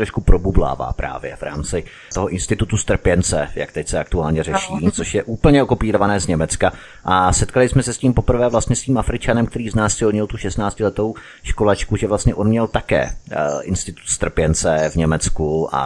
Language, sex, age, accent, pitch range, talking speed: Czech, male, 30-49, native, 90-110 Hz, 175 wpm